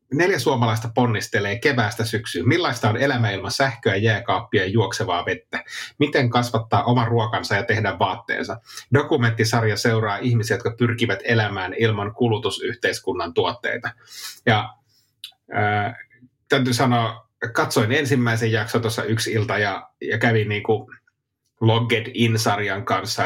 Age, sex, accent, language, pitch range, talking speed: 30-49, male, native, Finnish, 110-120 Hz, 120 wpm